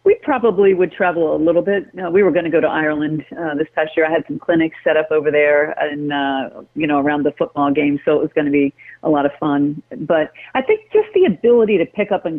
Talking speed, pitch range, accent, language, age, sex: 270 wpm, 155-195 Hz, American, English, 50-69, female